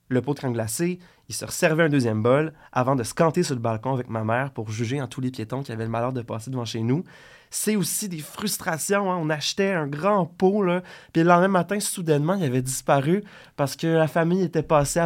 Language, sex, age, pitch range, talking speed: French, male, 20-39, 125-185 Hz, 235 wpm